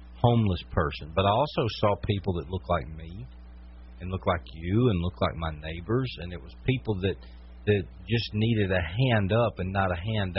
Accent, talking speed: American, 200 wpm